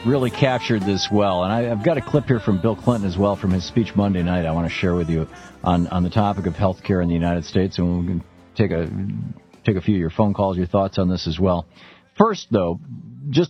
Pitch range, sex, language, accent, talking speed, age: 90-130 Hz, male, English, American, 260 wpm, 50-69